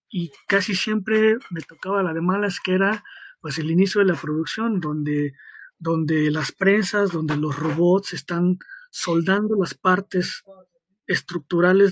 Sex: male